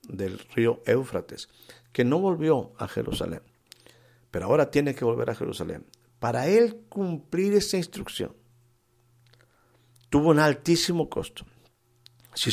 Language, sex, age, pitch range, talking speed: Spanish, male, 50-69, 120-140 Hz, 120 wpm